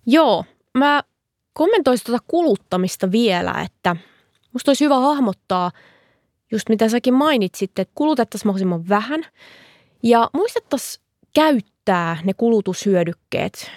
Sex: female